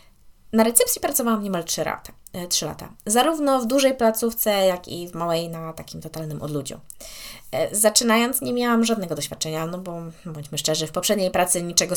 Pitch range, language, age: 160-230 Hz, Polish, 20-39